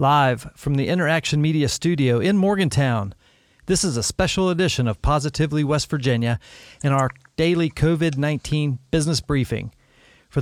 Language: English